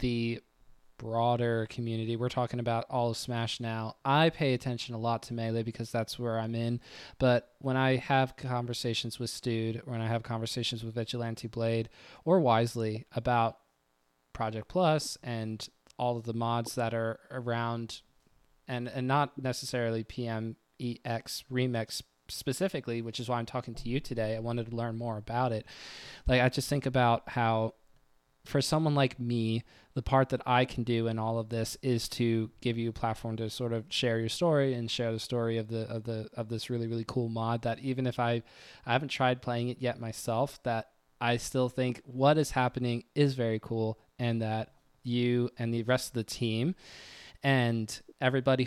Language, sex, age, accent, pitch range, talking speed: English, male, 20-39, American, 115-130 Hz, 185 wpm